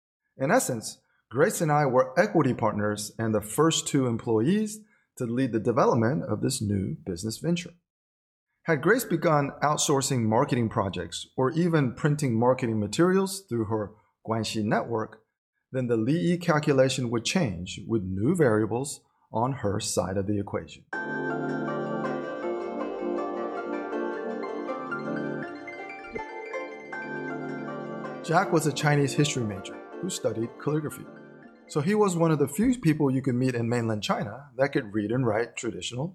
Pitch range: 110-160 Hz